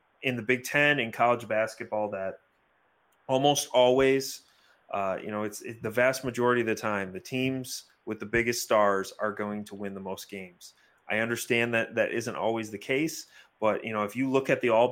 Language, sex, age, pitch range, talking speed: English, male, 30-49, 105-125 Hz, 205 wpm